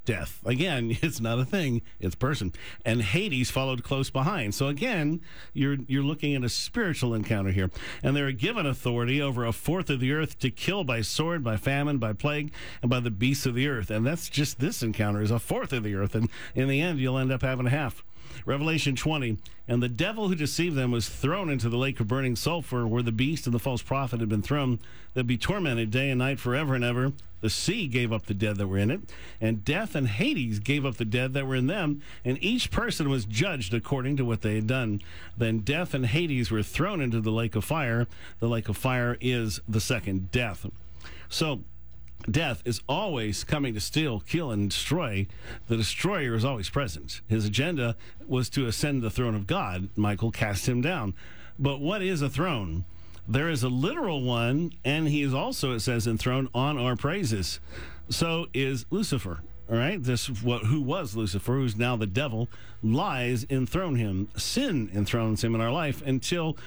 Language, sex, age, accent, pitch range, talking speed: English, male, 50-69, American, 110-140 Hz, 205 wpm